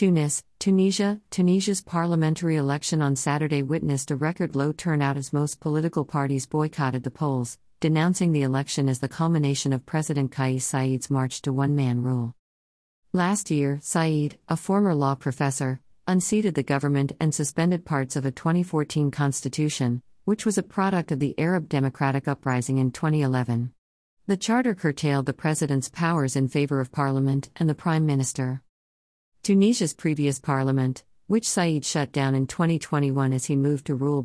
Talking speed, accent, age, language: 155 wpm, American, 50-69, English